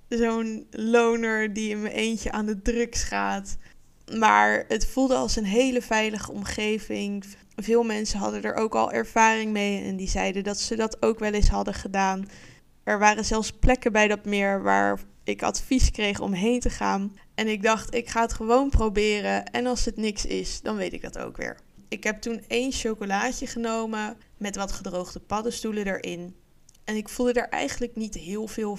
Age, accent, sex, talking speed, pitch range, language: 20-39, Dutch, female, 190 wpm, 195-235 Hz, Dutch